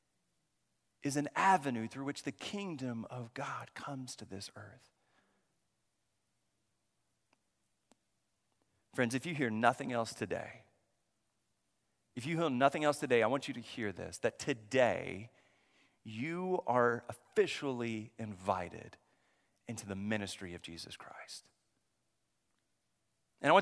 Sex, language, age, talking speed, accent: male, English, 40-59, 120 wpm, American